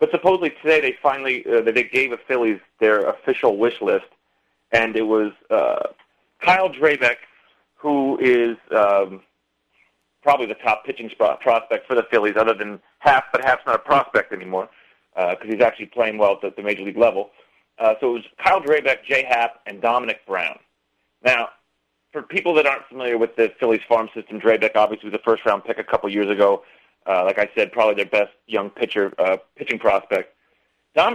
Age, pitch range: 40-59, 110-155 Hz